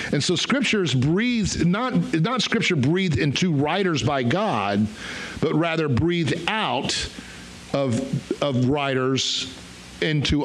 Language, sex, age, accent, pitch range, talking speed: English, male, 50-69, American, 130-165 Hz, 115 wpm